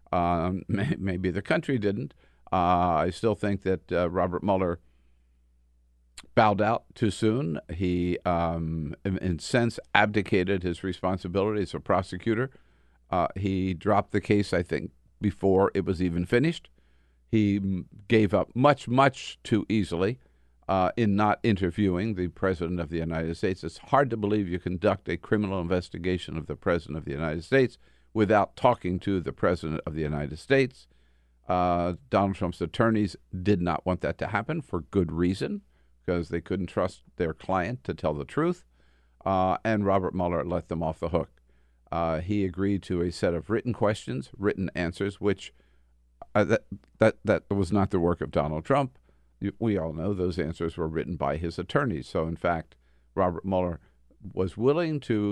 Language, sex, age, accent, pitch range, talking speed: English, male, 50-69, American, 80-100 Hz, 170 wpm